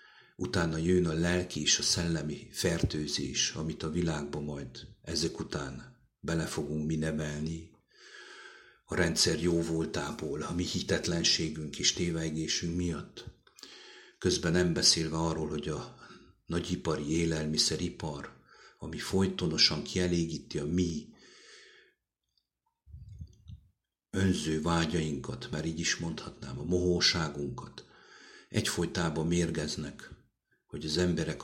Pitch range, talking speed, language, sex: 75-90 Hz, 105 wpm, English, male